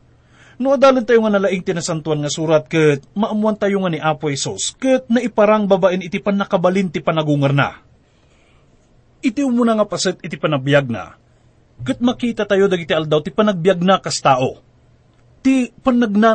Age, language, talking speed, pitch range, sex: 30-49, English, 160 wpm, 160-230 Hz, male